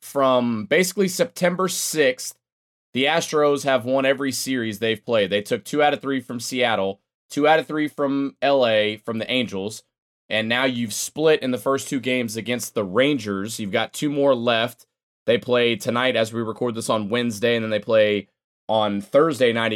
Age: 20-39